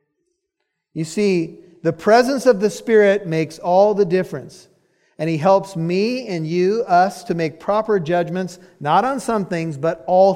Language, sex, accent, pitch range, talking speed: English, male, American, 175-220 Hz, 160 wpm